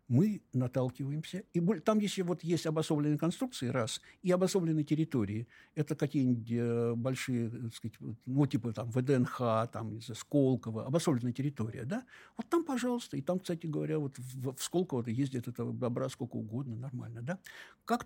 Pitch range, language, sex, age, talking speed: 120-160 Hz, Russian, male, 60-79, 145 wpm